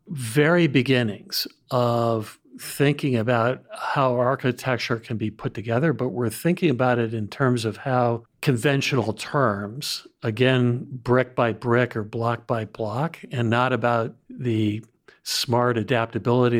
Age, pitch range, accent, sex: 50-69, 115-135 Hz, American, male